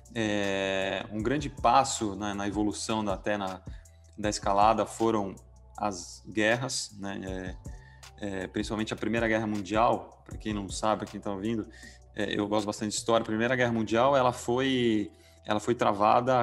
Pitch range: 100-115 Hz